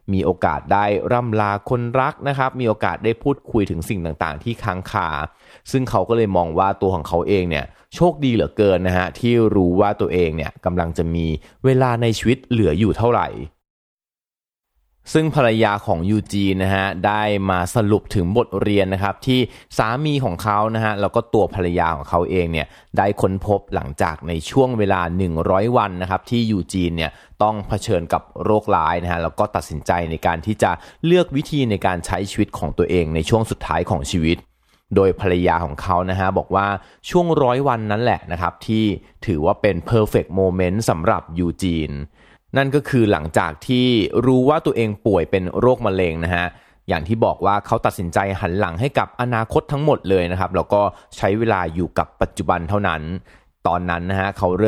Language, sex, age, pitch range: Thai, male, 20-39, 90-115 Hz